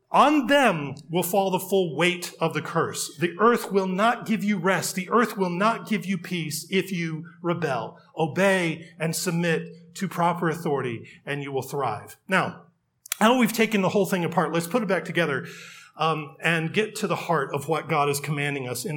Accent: American